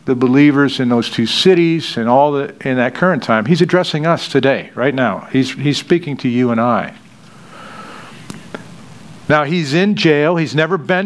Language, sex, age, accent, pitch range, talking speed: English, male, 50-69, American, 135-175 Hz, 180 wpm